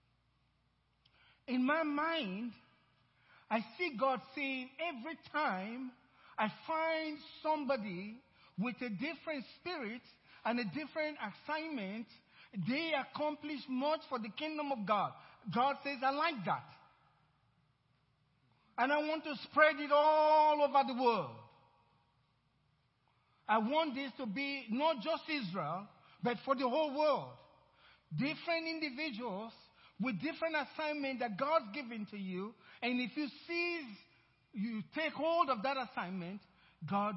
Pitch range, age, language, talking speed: 200-290 Hz, 50-69, English, 125 wpm